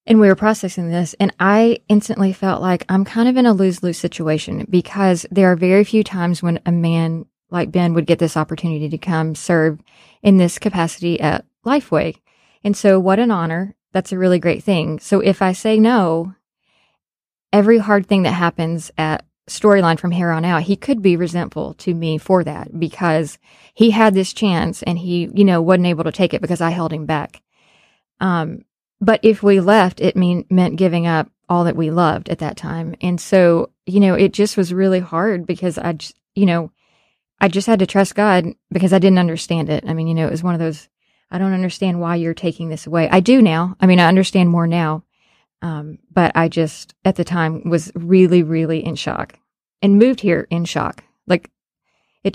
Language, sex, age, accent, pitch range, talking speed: English, female, 20-39, American, 165-195 Hz, 205 wpm